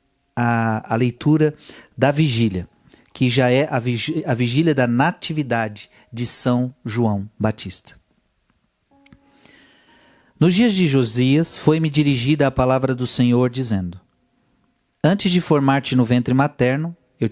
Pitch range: 115-145 Hz